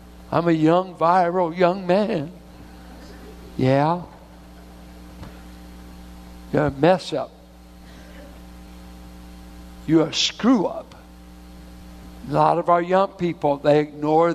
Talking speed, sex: 95 wpm, male